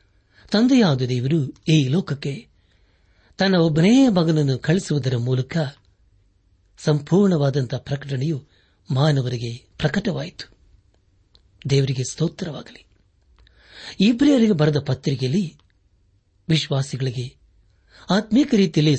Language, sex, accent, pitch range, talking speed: Kannada, male, native, 100-165 Hz, 65 wpm